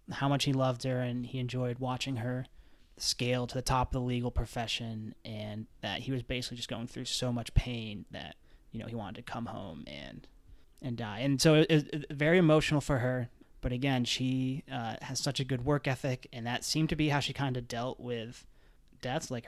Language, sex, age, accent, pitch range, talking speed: English, male, 30-49, American, 120-135 Hz, 220 wpm